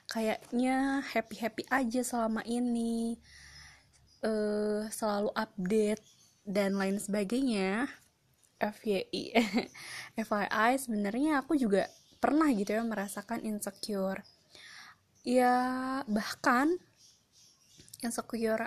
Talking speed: 75 wpm